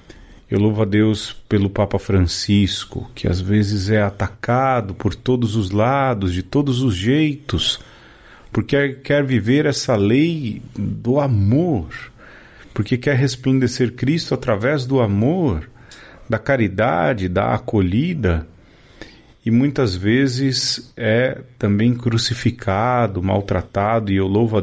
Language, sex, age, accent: Portuguese, male, 40-59, Brazilian